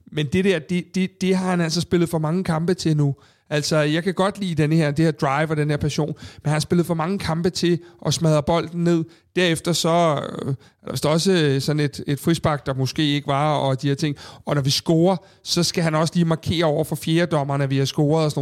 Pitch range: 140-170 Hz